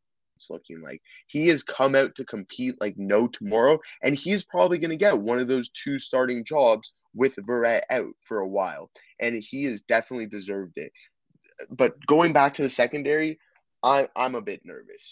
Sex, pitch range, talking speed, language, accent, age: male, 110-155 Hz, 180 wpm, English, American, 20-39